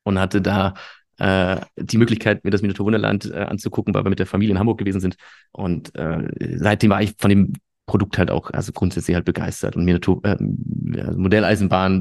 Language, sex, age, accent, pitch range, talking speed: German, male, 30-49, German, 95-110 Hz, 200 wpm